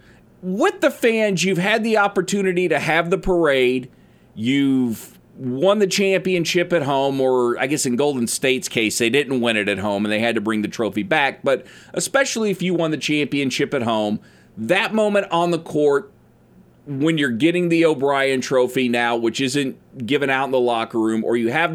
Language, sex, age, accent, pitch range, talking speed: English, male, 30-49, American, 120-175 Hz, 195 wpm